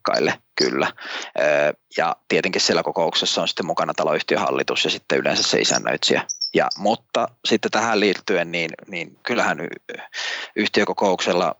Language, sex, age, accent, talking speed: Finnish, male, 30-49, native, 120 wpm